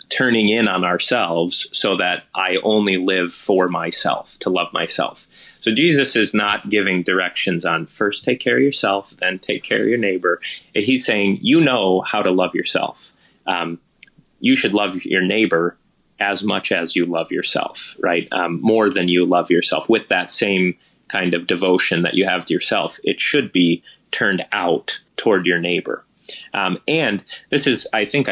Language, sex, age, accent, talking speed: English, male, 30-49, American, 180 wpm